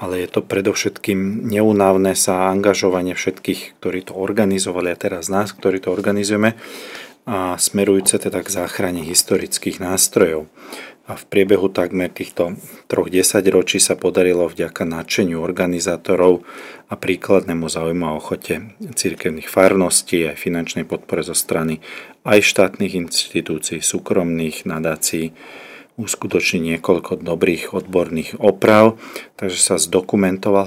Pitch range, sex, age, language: 85-100 Hz, male, 40-59, Slovak